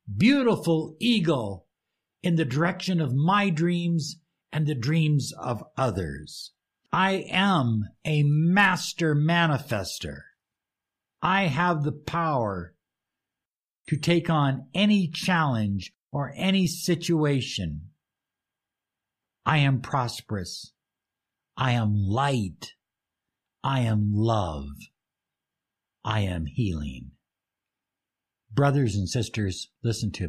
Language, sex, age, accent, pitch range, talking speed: English, male, 60-79, American, 100-160 Hz, 95 wpm